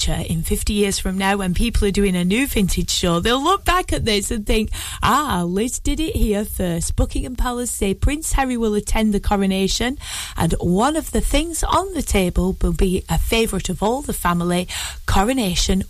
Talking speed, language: 195 wpm, English